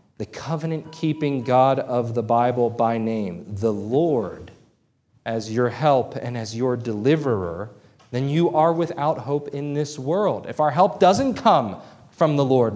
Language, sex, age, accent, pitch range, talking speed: English, male, 40-59, American, 120-160 Hz, 155 wpm